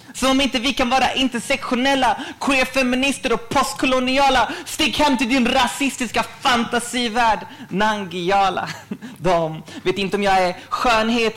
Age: 30-49